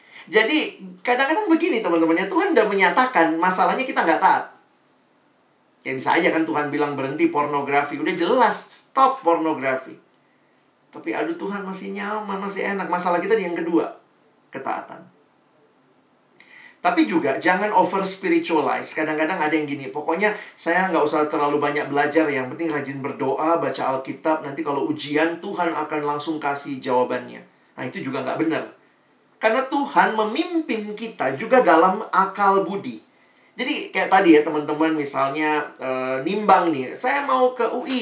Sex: male